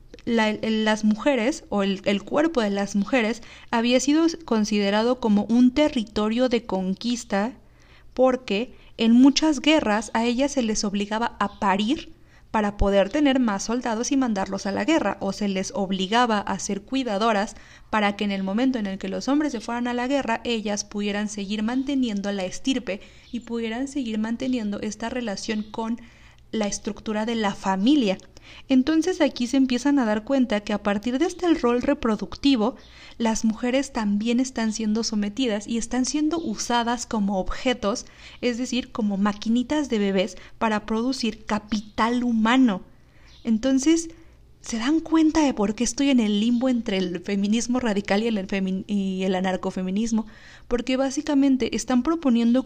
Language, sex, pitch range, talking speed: Spanish, female, 205-255 Hz, 160 wpm